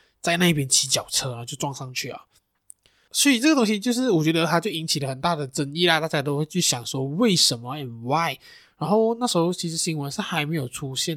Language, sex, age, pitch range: Chinese, male, 20-39, 140-185 Hz